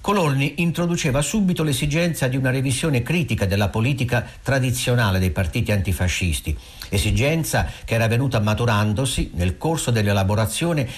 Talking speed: 120 wpm